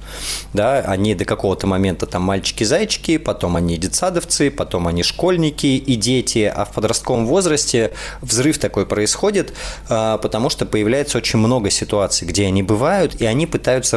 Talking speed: 140 wpm